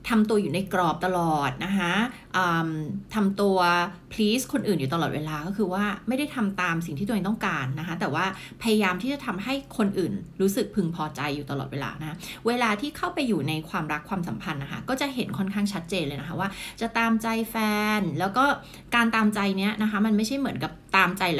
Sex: female